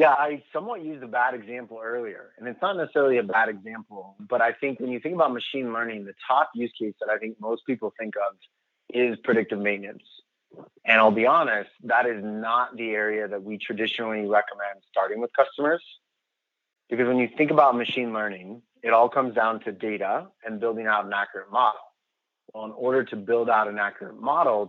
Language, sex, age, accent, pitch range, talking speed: English, male, 30-49, American, 105-125 Hz, 200 wpm